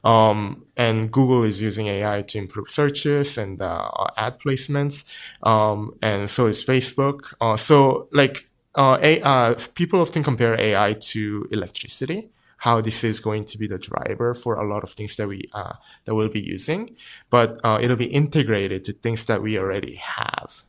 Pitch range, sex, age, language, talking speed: 105-130 Hz, male, 20-39, English, 175 wpm